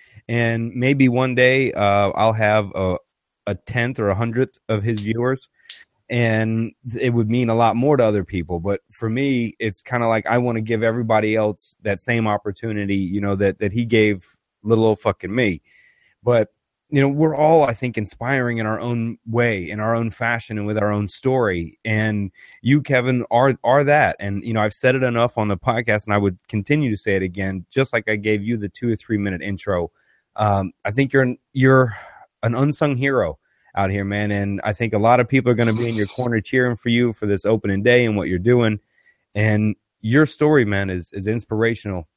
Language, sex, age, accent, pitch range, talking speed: English, male, 30-49, American, 100-125 Hz, 215 wpm